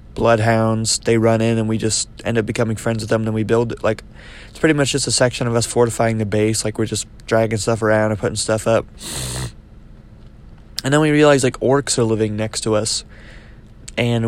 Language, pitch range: English, 110-120 Hz